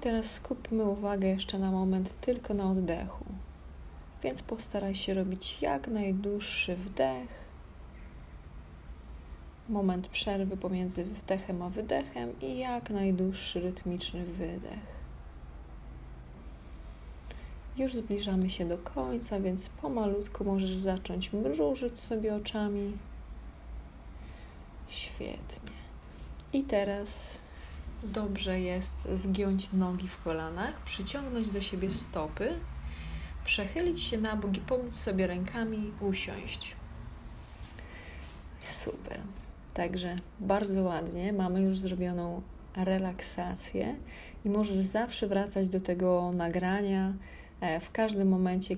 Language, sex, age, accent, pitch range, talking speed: Polish, female, 20-39, native, 130-195 Hz, 100 wpm